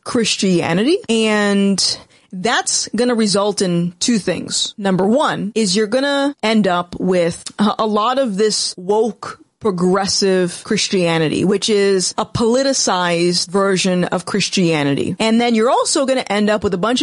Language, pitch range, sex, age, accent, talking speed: English, 180-245 Hz, female, 30-49, American, 145 wpm